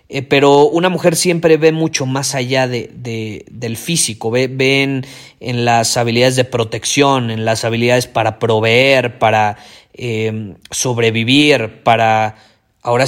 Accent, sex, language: Mexican, male, Spanish